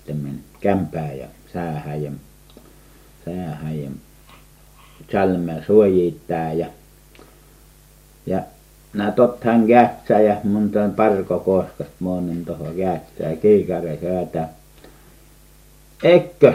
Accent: native